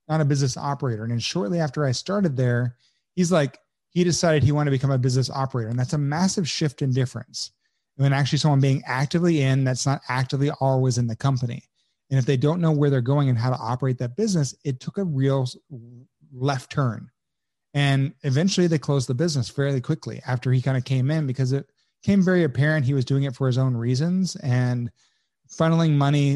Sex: male